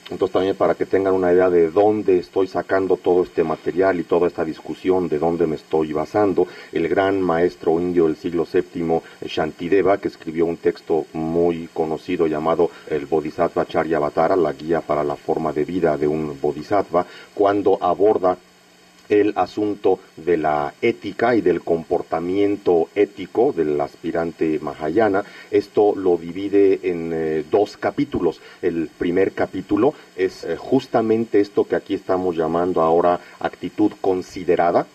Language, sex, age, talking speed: English, male, 40-59, 150 wpm